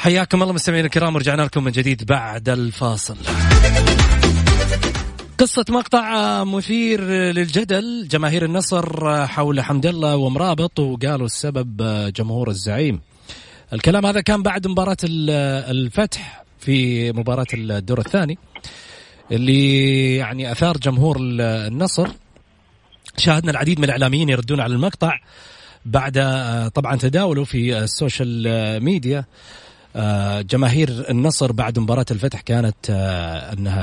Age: 30-49